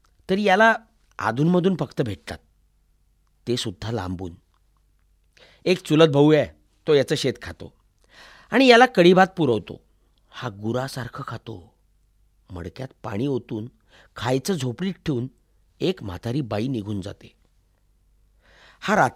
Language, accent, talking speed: Marathi, native, 95 wpm